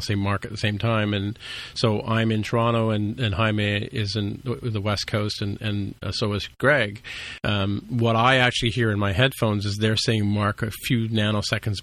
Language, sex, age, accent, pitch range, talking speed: English, male, 40-59, American, 100-115 Hz, 200 wpm